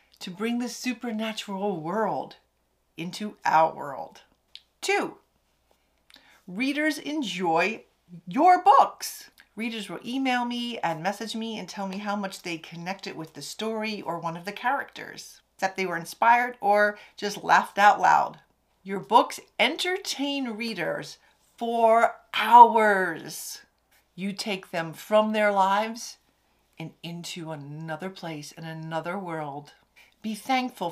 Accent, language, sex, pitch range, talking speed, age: American, English, female, 190-245 Hz, 125 wpm, 40-59